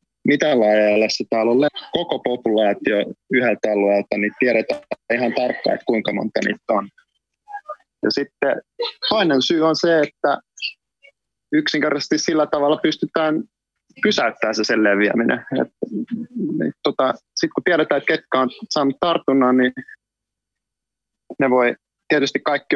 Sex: male